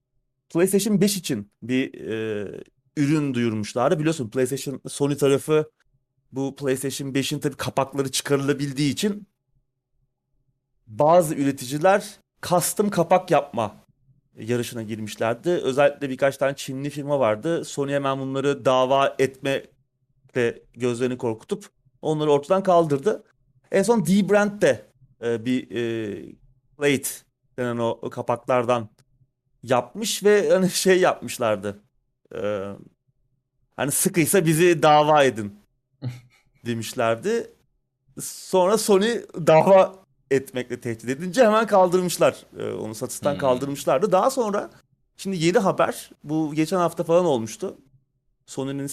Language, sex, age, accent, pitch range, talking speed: Turkish, male, 30-49, native, 130-170 Hz, 110 wpm